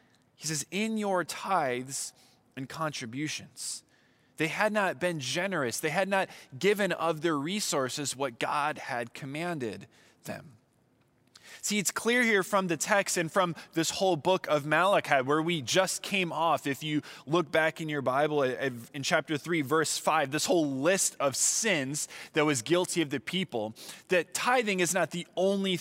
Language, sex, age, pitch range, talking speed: English, male, 20-39, 140-190 Hz, 165 wpm